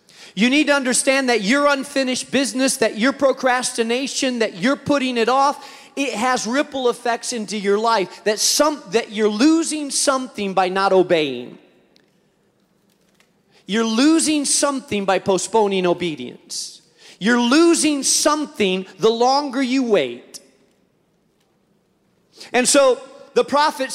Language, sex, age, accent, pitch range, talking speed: English, male, 40-59, American, 210-285 Hz, 125 wpm